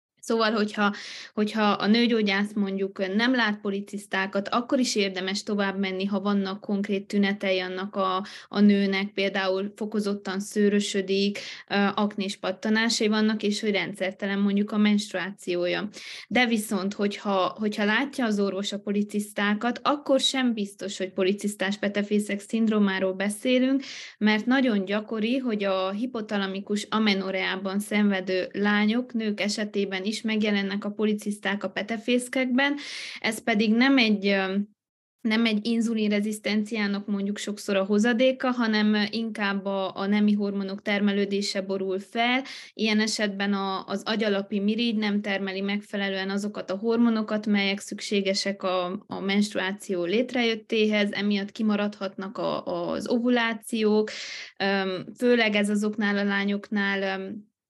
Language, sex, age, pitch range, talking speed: Hungarian, female, 20-39, 195-220 Hz, 120 wpm